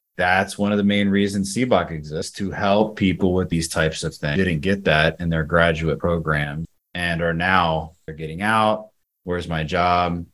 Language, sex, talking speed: English, male, 185 wpm